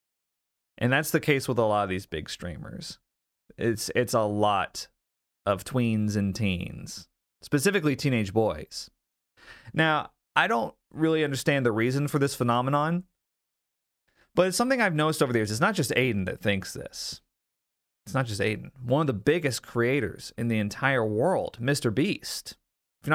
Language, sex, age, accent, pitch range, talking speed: English, male, 30-49, American, 105-140 Hz, 165 wpm